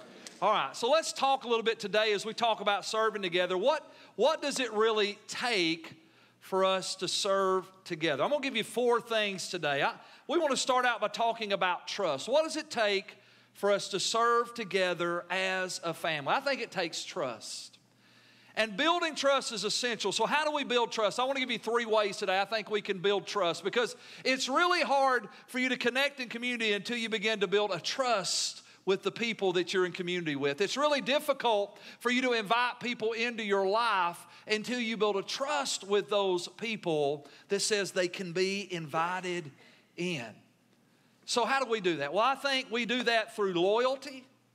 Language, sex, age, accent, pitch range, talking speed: English, male, 40-59, American, 190-245 Hz, 200 wpm